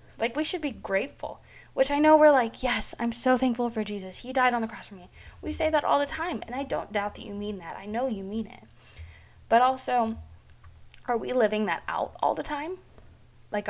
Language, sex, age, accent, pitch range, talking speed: English, female, 10-29, American, 190-235 Hz, 230 wpm